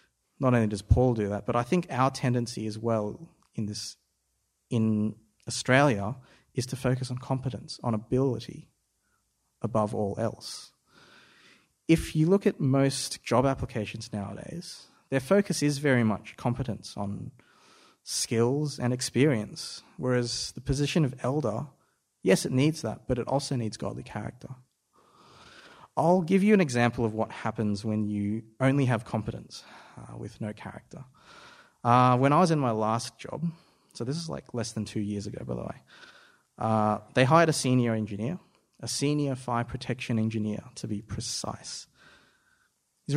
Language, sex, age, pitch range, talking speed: English, male, 30-49, 110-150 Hz, 155 wpm